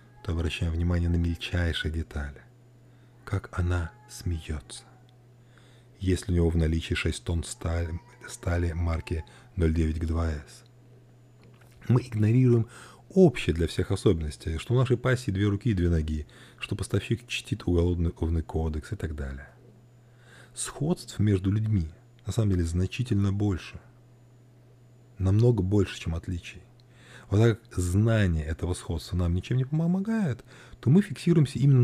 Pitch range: 90-125 Hz